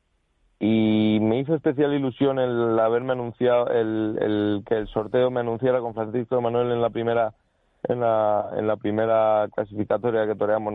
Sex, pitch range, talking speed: male, 100-120 Hz, 165 wpm